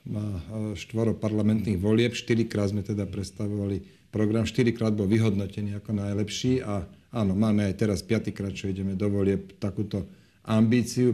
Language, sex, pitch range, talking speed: Slovak, male, 100-115 Hz, 140 wpm